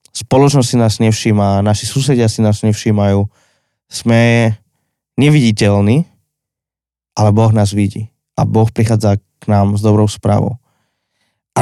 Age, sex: 20-39, male